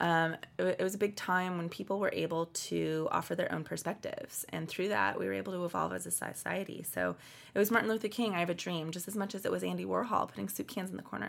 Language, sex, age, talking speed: English, female, 20-39, 270 wpm